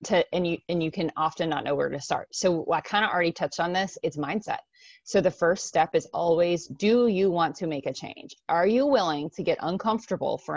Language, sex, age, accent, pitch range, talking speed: English, female, 30-49, American, 160-190 Hz, 240 wpm